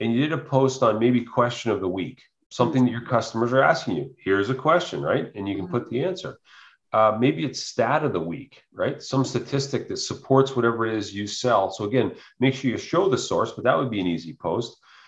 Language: English